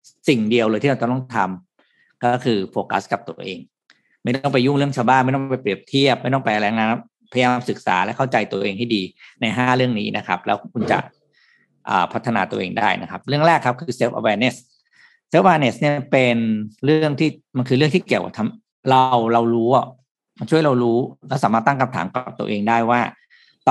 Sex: male